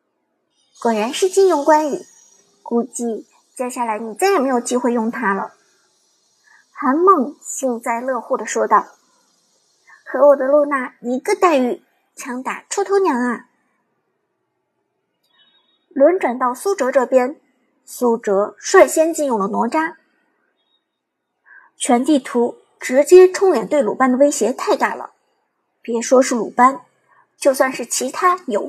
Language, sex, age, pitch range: Chinese, male, 50-69, 235-315 Hz